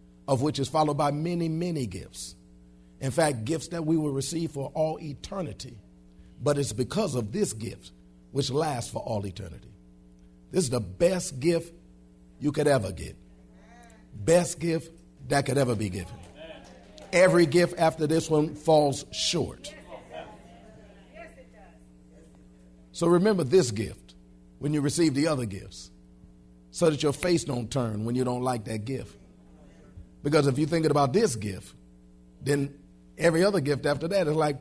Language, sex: English, male